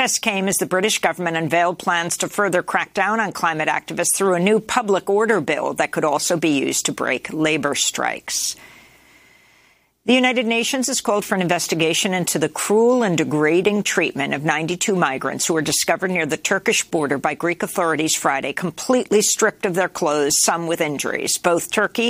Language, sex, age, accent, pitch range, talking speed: English, female, 50-69, American, 155-200 Hz, 185 wpm